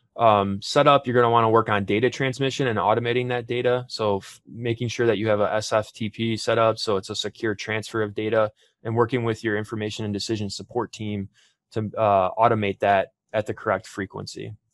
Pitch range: 105-125 Hz